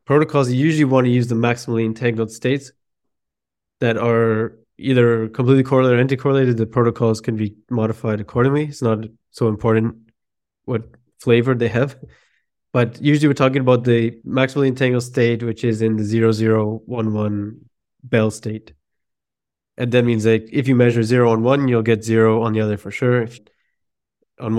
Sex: male